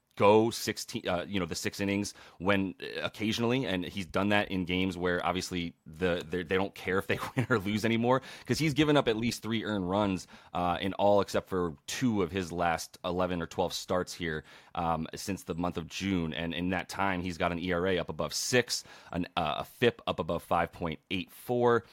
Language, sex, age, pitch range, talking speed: English, male, 30-49, 90-105 Hz, 210 wpm